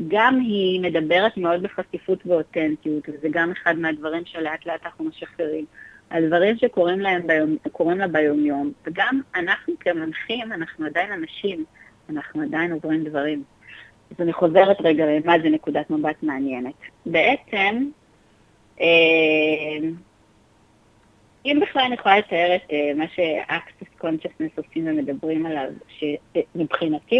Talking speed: 120 wpm